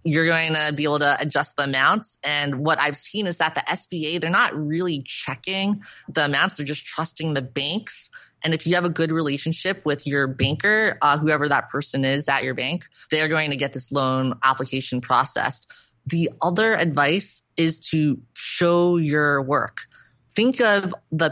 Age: 20-39